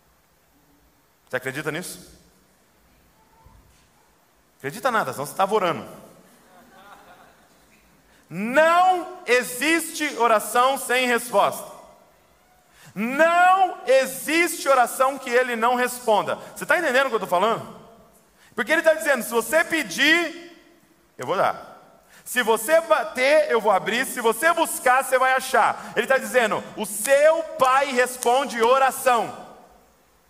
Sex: male